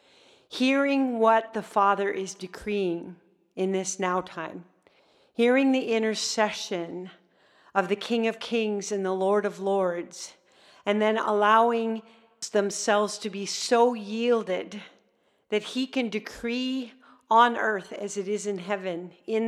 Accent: American